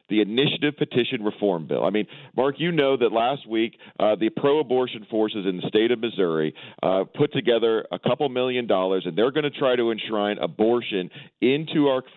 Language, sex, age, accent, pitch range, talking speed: English, male, 40-59, American, 110-150 Hz, 185 wpm